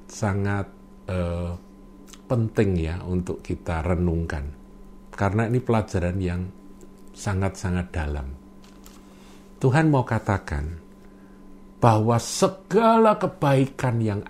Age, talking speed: 50-69, 85 wpm